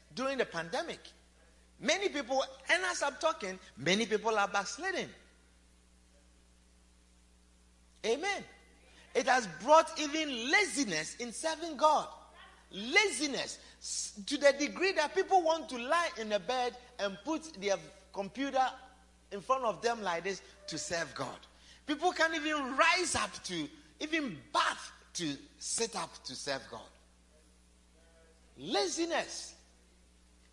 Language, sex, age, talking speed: English, male, 50-69, 125 wpm